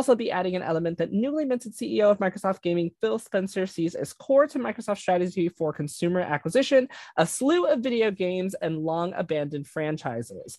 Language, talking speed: English, 175 wpm